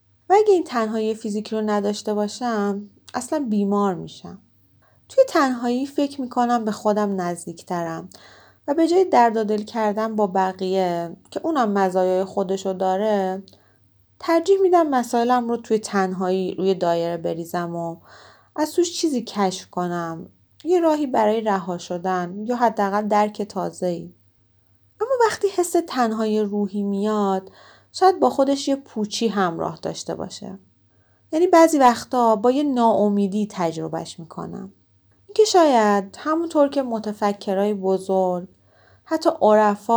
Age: 30-49